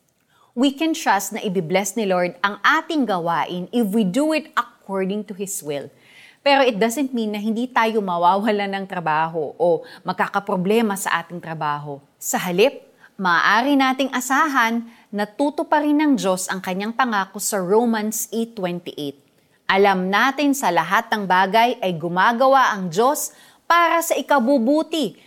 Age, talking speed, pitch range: 30-49, 145 wpm, 190-270 Hz